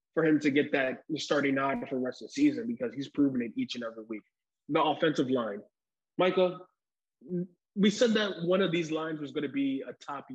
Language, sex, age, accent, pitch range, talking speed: English, male, 20-39, American, 135-185 Hz, 220 wpm